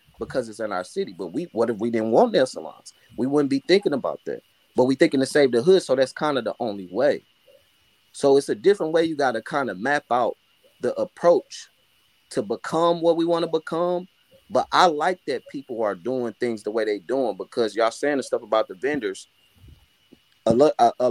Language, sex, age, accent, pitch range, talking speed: English, male, 30-49, American, 125-170 Hz, 215 wpm